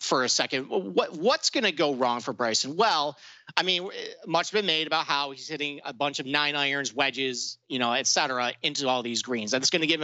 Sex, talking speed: male, 235 wpm